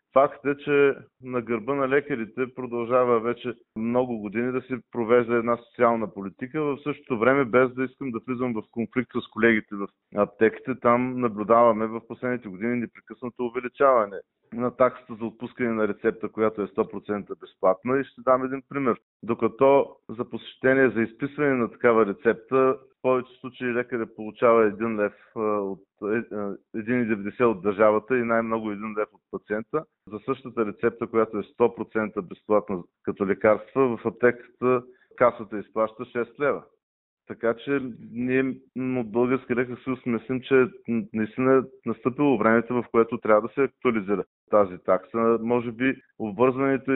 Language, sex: Bulgarian, male